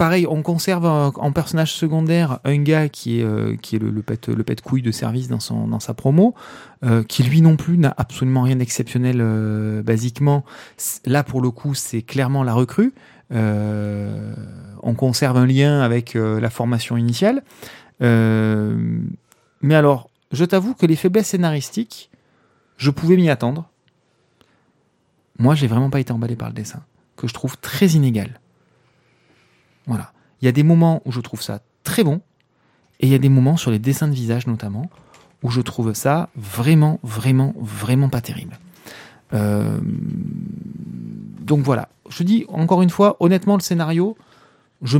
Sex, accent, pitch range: male, French, 120-160 Hz